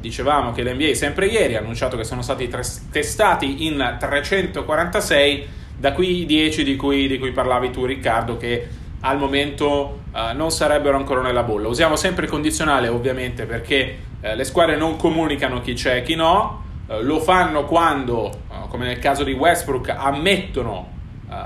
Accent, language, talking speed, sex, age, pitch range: native, Italian, 170 wpm, male, 30-49, 120-155 Hz